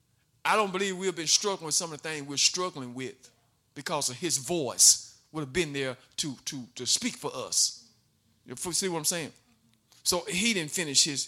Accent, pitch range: American, 165-275 Hz